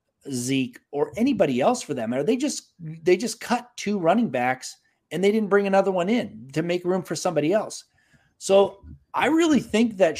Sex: male